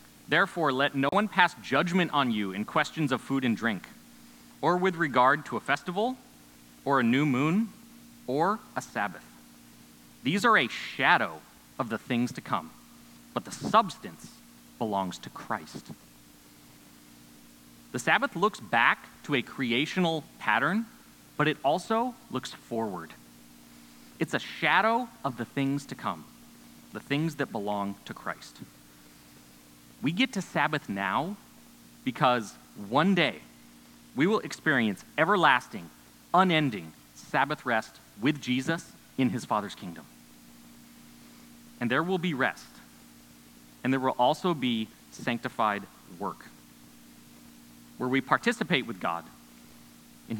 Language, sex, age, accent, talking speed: English, male, 30-49, American, 130 wpm